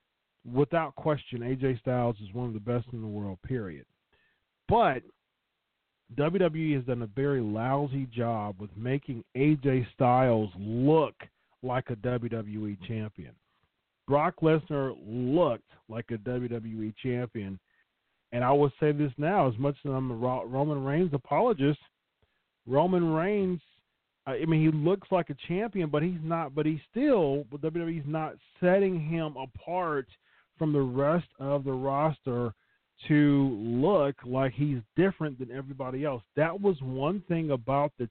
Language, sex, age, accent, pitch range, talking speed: English, male, 40-59, American, 120-150 Hz, 145 wpm